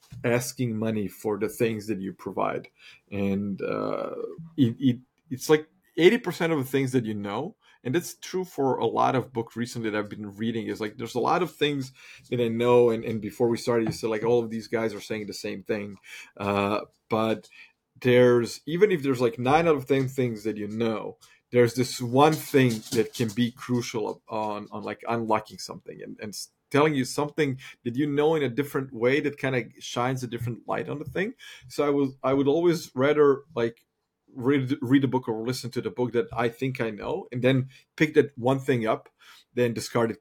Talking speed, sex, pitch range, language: 215 wpm, male, 110-135 Hz, English